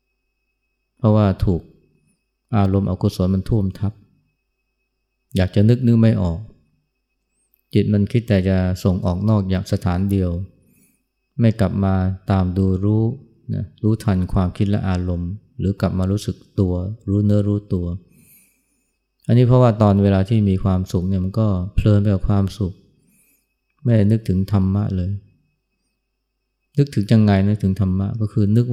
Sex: male